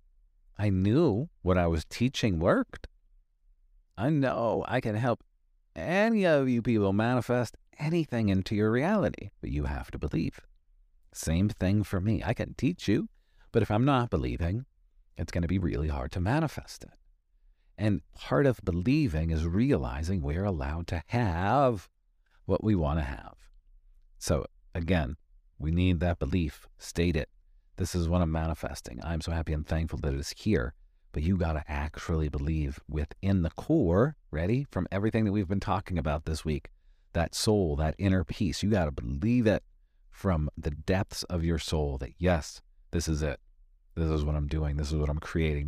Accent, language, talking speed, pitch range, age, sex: American, English, 175 wpm, 75-100 Hz, 50-69, male